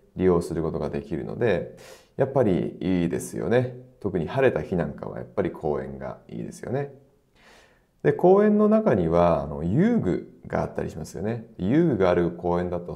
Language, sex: Japanese, male